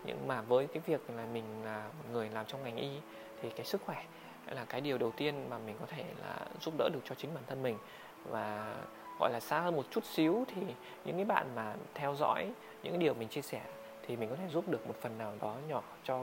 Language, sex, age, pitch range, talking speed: Vietnamese, male, 20-39, 110-155 Hz, 250 wpm